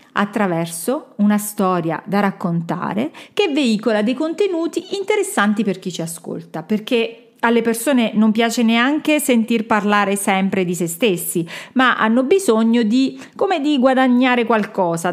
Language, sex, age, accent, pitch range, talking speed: Italian, female, 40-59, native, 200-260 Hz, 135 wpm